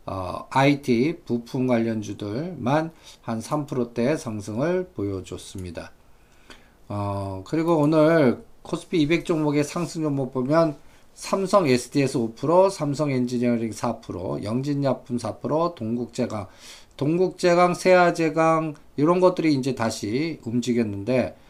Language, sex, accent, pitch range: Korean, male, native, 110-155 Hz